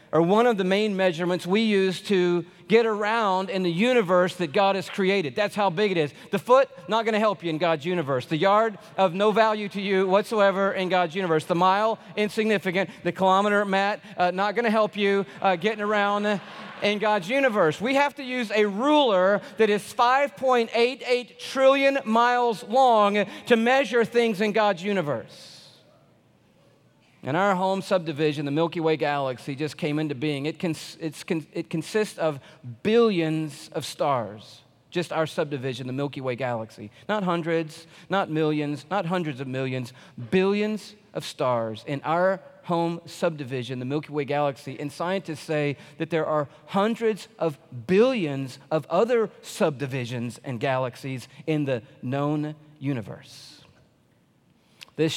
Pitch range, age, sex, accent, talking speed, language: 155-210 Hz, 40-59, male, American, 155 wpm, English